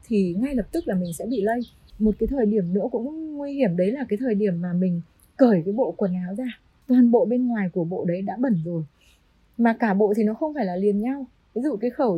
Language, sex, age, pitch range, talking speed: Vietnamese, female, 20-39, 195-260 Hz, 265 wpm